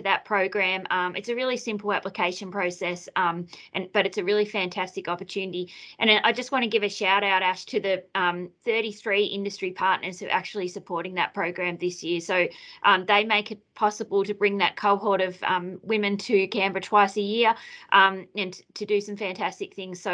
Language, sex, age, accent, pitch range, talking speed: English, female, 20-39, Australian, 185-225 Hz, 200 wpm